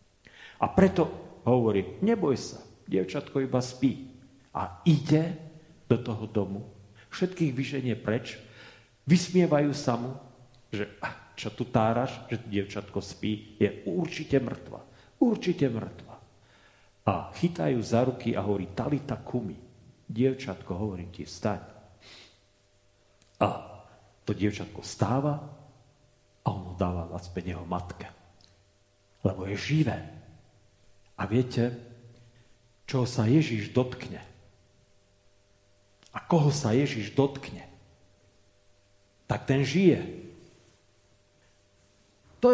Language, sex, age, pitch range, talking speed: Slovak, male, 50-69, 100-140 Hz, 100 wpm